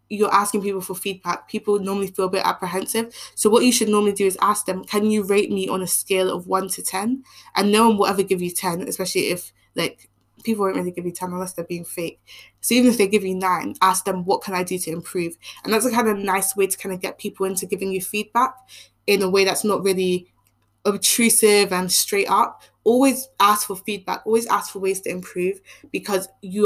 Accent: British